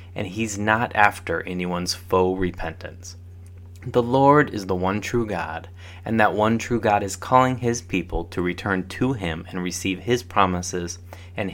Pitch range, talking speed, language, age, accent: 90-115 Hz, 165 wpm, English, 20-39, American